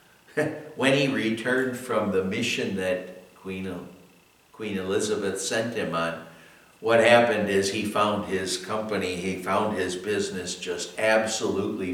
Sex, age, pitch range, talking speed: male, 60-79, 100-130 Hz, 130 wpm